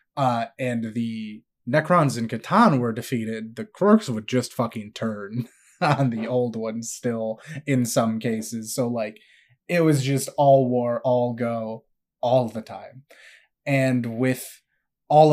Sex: male